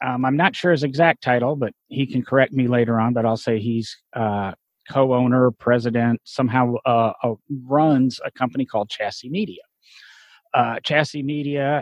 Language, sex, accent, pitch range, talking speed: English, male, American, 115-140 Hz, 170 wpm